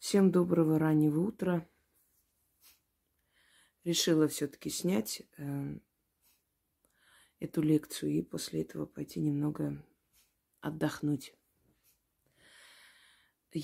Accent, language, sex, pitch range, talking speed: native, Russian, female, 145-175 Hz, 70 wpm